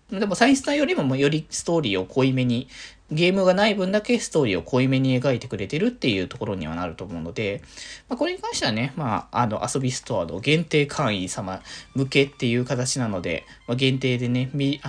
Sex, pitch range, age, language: male, 120-185 Hz, 20-39, Japanese